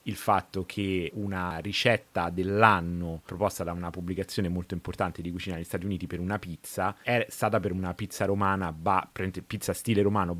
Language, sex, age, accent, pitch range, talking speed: Italian, male, 30-49, native, 85-105 Hz, 175 wpm